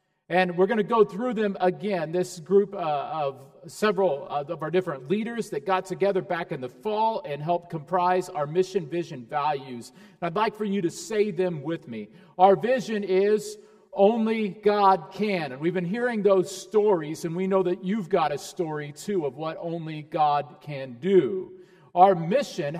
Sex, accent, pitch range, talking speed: male, American, 160-195 Hz, 185 wpm